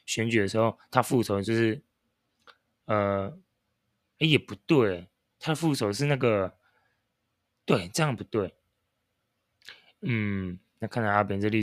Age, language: 20-39, Chinese